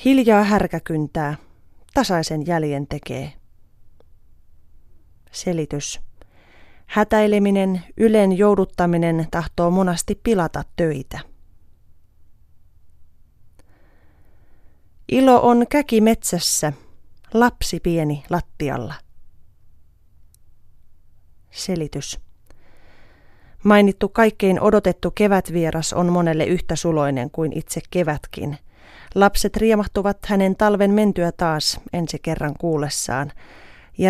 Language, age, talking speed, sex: Finnish, 30-49, 75 wpm, female